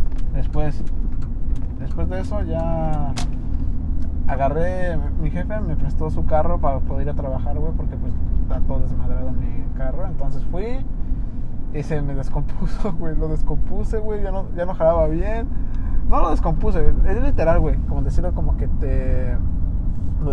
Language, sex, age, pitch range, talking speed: Spanish, male, 20-39, 75-90 Hz, 155 wpm